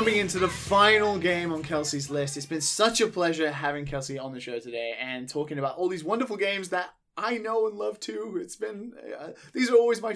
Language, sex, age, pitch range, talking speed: English, male, 20-39, 135-190 Hz, 230 wpm